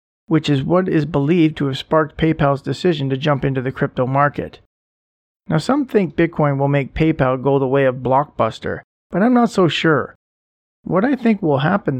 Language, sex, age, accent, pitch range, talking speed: English, male, 40-59, American, 135-180 Hz, 190 wpm